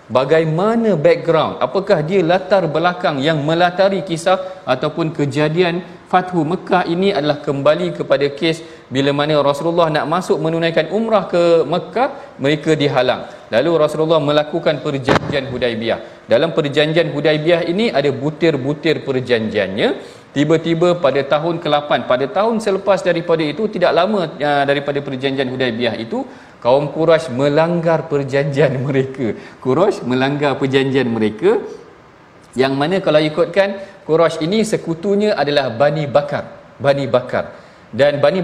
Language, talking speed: Malayalam, 125 wpm